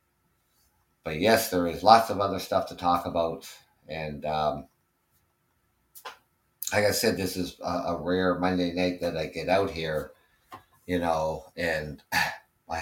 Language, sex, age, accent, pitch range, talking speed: English, male, 50-69, American, 80-90 Hz, 150 wpm